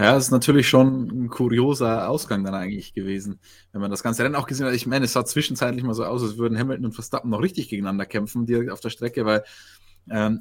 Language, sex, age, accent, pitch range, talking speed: German, male, 20-39, German, 105-130 Hz, 240 wpm